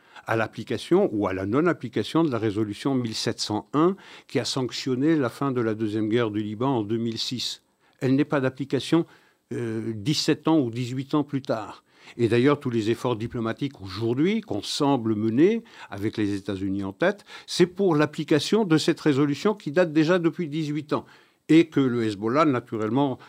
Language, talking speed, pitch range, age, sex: French, 175 wpm, 115-160 Hz, 60-79, male